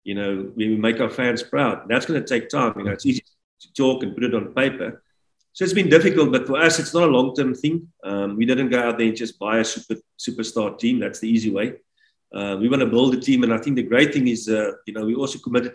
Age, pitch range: 40-59, 115-140 Hz